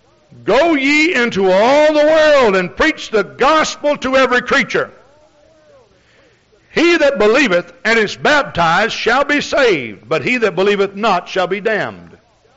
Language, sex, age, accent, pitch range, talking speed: English, male, 60-79, American, 200-275 Hz, 145 wpm